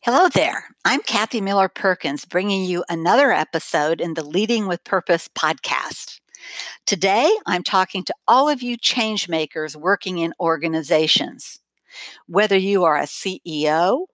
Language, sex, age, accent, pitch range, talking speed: English, female, 60-79, American, 160-215 Hz, 135 wpm